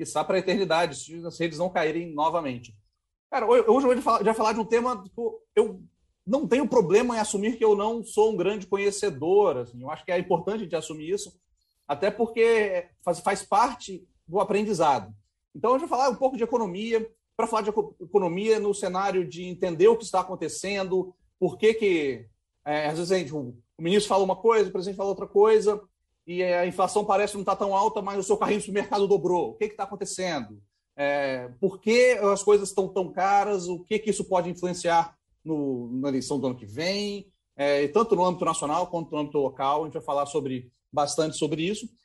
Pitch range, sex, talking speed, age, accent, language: 170-220 Hz, male, 210 wpm, 40-59, Brazilian, Portuguese